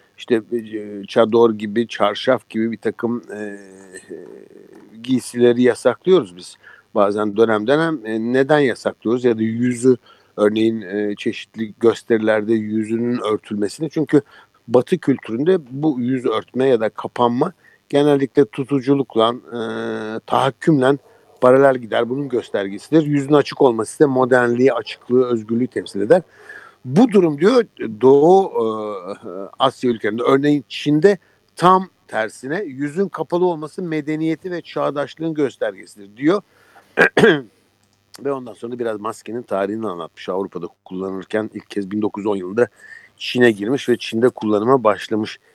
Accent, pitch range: native, 110-150 Hz